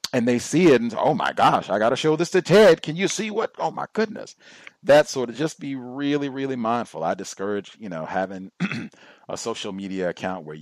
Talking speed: 225 wpm